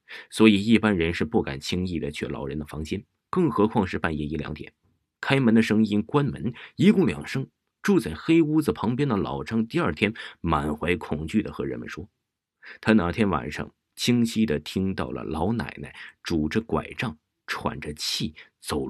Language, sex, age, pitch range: Chinese, male, 30-49, 80-110 Hz